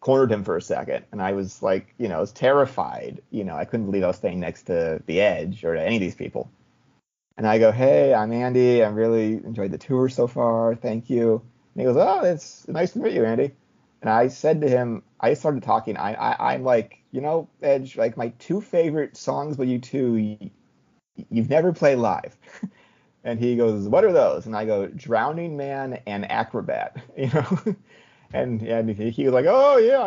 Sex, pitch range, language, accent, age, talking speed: male, 105-140 Hz, English, American, 30-49, 215 wpm